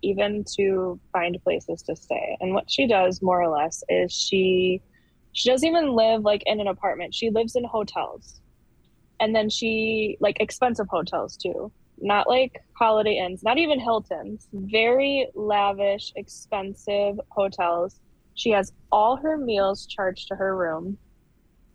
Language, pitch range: English, 185-220 Hz